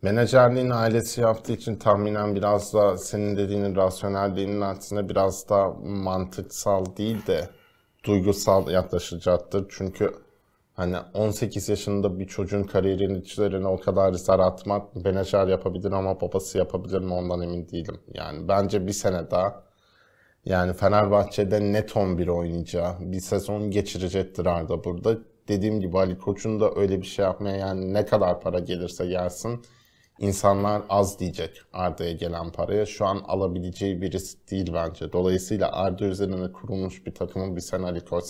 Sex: male